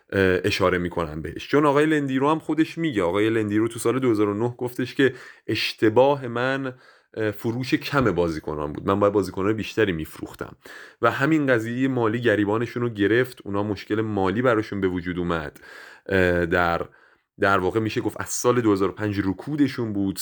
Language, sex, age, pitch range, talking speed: Persian, male, 30-49, 95-115 Hz, 155 wpm